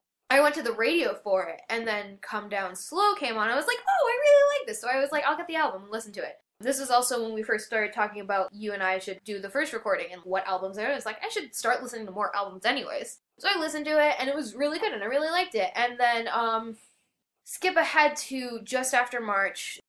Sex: female